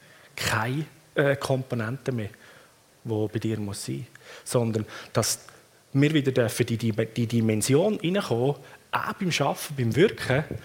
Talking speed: 145 wpm